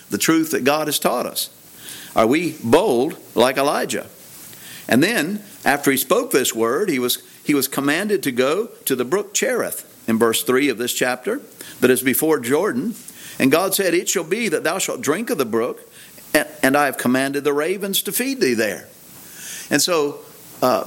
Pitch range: 130-195 Hz